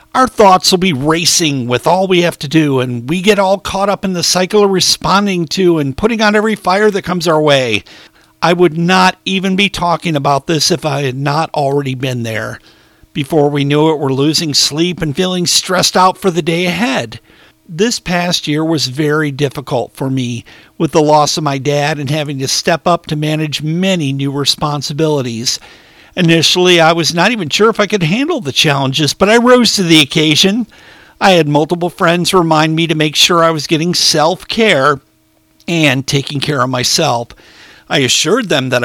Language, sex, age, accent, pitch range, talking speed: English, male, 50-69, American, 145-185 Hz, 195 wpm